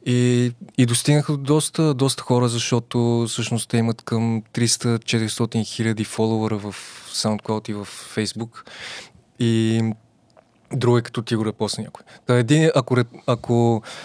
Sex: male